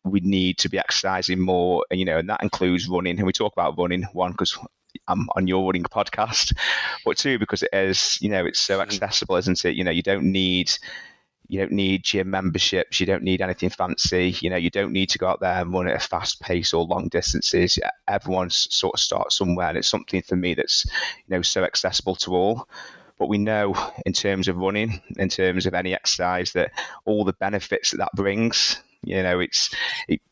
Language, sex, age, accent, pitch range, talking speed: English, male, 20-39, British, 90-95 Hz, 220 wpm